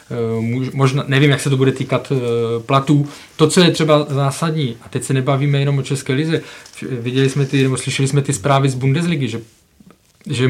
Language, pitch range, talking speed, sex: Czech, 125-145 Hz, 190 wpm, male